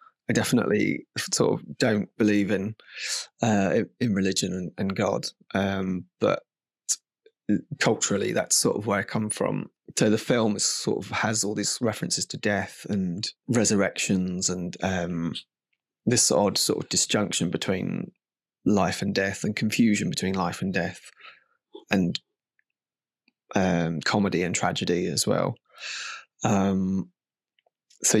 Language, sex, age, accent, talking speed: English, male, 20-39, British, 130 wpm